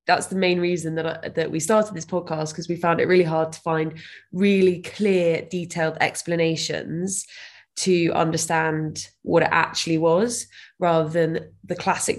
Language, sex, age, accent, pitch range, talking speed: English, female, 20-39, British, 160-190 Hz, 160 wpm